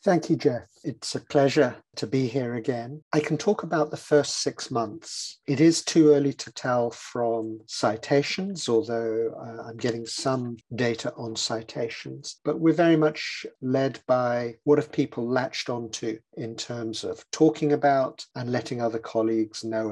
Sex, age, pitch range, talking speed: male, 50-69, 115-145 Hz, 165 wpm